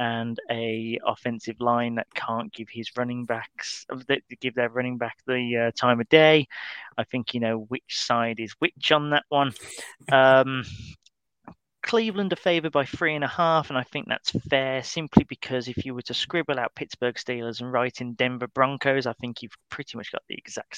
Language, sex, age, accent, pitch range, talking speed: English, male, 30-49, British, 120-150 Hz, 195 wpm